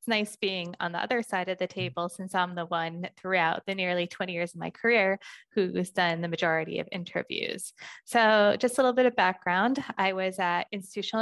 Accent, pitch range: American, 180-210 Hz